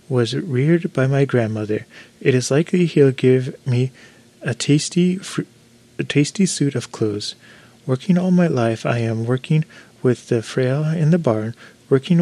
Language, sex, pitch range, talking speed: English, male, 120-150 Hz, 160 wpm